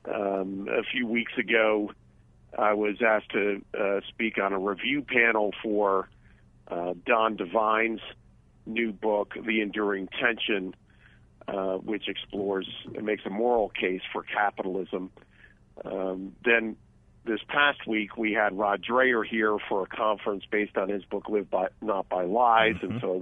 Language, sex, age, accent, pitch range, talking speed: English, male, 50-69, American, 95-115 Hz, 150 wpm